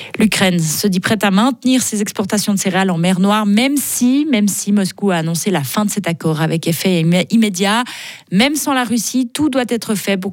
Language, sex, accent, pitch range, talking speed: French, female, French, 170-215 Hz, 210 wpm